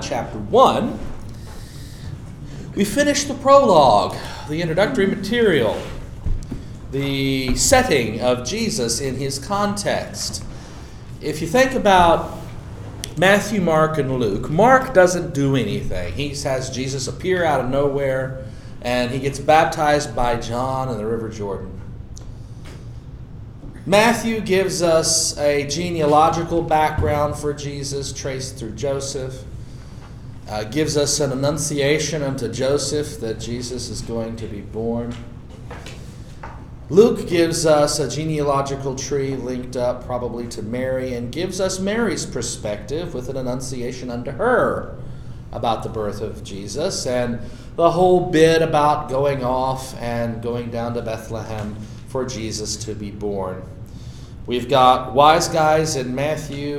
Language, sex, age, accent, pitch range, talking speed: English, male, 40-59, American, 120-155 Hz, 125 wpm